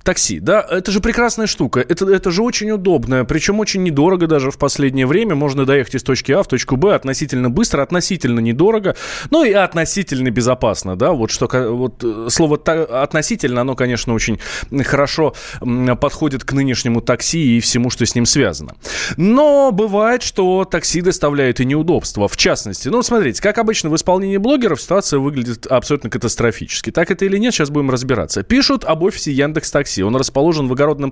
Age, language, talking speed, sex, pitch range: 20-39, Russian, 170 wpm, male, 130-200 Hz